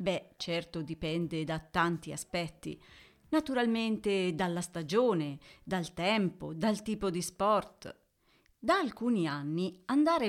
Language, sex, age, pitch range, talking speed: Italian, female, 40-59, 165-220 Hz, 110 wpm